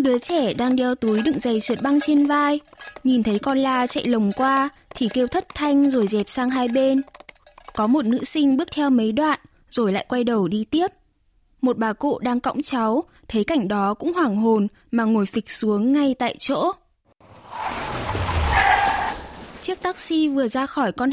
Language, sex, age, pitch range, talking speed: Vietnamese, female, 20-39, 230-290 Hz, 185 wpm